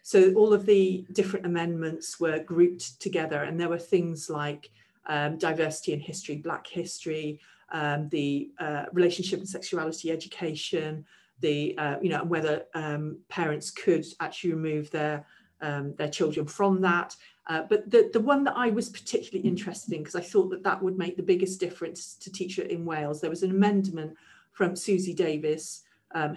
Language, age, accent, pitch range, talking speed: English, 40-59, British, 155-190 Hz, 175 wpm